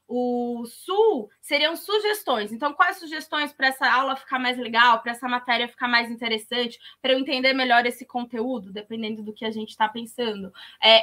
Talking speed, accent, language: 180 wpm, Brazilian, Portuguese